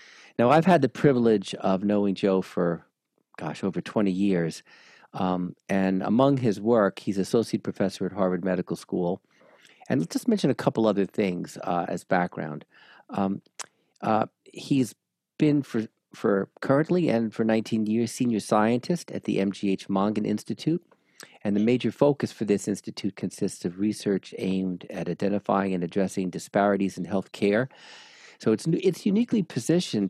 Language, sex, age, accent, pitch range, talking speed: English, male, 50-69, American, 95-115 Hz, 160 wpm